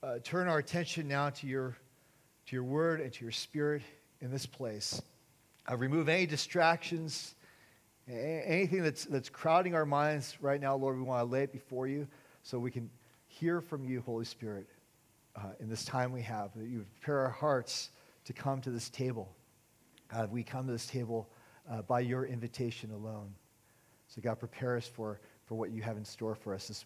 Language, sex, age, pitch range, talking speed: English, male, 40-59, 120-160 Hz, 195 wpm